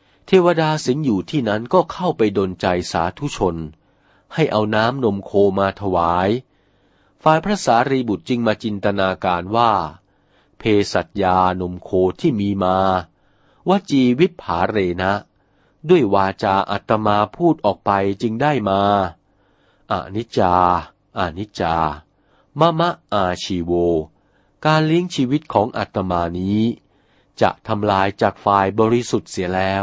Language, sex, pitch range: Thai, male, 95-135 Hz